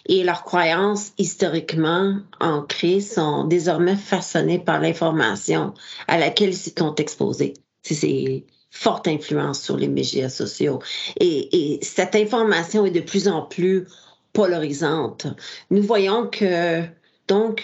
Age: 40-59